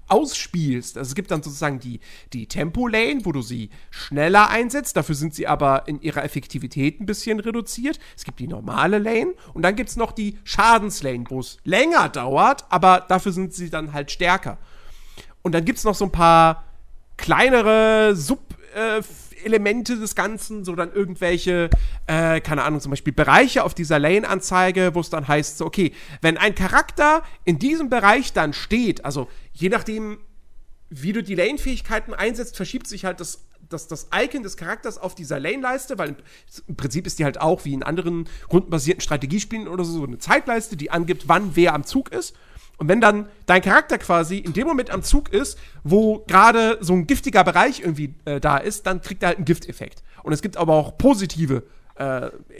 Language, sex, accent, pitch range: German, male, German, 155-215 Hz